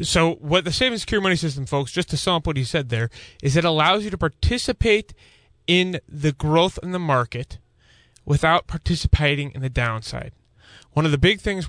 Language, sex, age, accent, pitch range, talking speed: English, male, 30-49, American, 130-175 Hz, 200 wpm